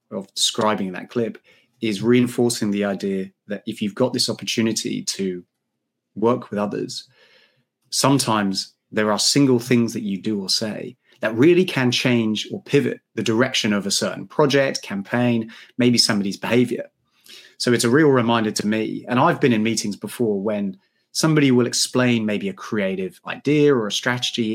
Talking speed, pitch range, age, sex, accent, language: 165 wpm, 110-130 Hz, 30-49, male, British, English